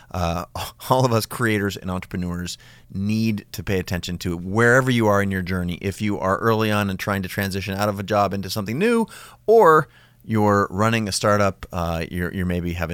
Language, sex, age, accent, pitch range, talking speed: English, male, 30-49, American, 90-115 Hz, 205 wpm